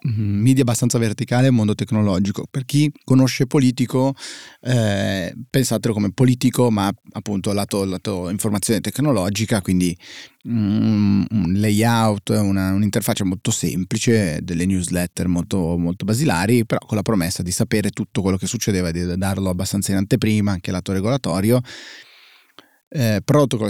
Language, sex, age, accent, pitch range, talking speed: Italian, male, 30-49, native, 95-120 Hz, 135 wpm